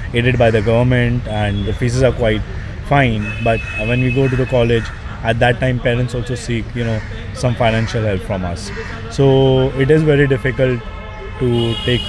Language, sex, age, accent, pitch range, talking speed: English, male, 20-39, Indian, 110-130 Hz, 185 wpm